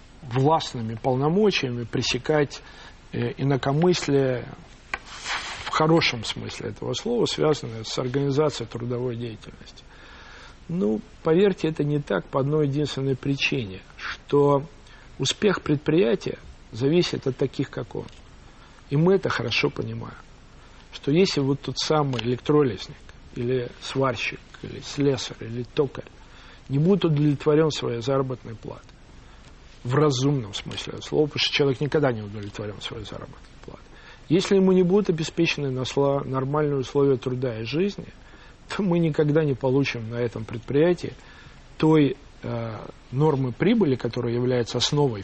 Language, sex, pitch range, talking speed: Russian, male, 120-150 Hz, 125 wpm